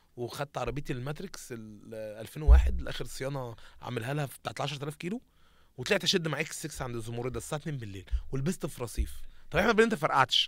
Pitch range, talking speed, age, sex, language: 125-185 Hz, 185 wpm, 20-39, male, Arabic